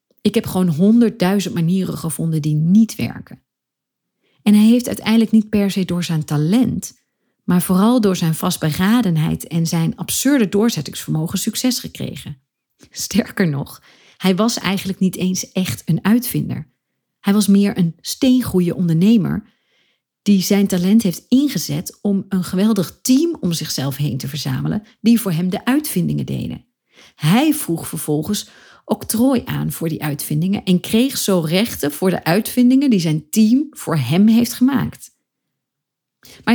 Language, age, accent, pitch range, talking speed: Dutch, 40-59, Dutch, 160-225 Hz, 145 wpm